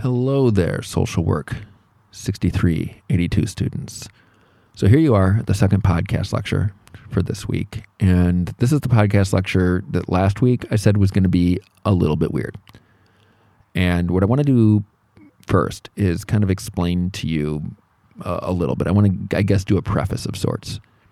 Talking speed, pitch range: 180 wpm, 95-110 Hz